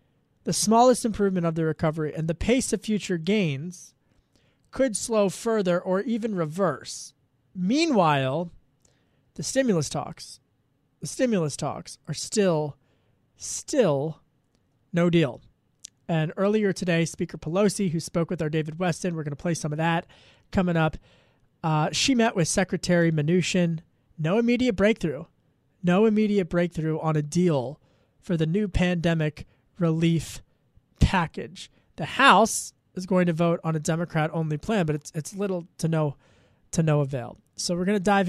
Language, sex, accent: English, male, American